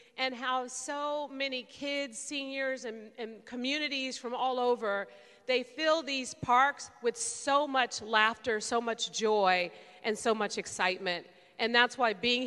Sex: female